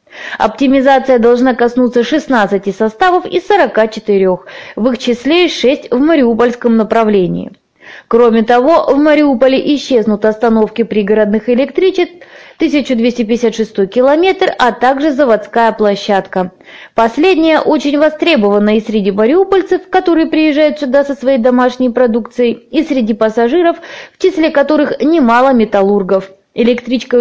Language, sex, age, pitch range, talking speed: Russian, female, 20-39, 220-300 Hz, 110 wpm